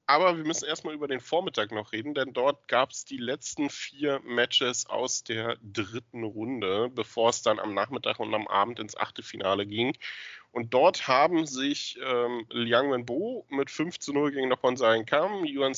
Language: German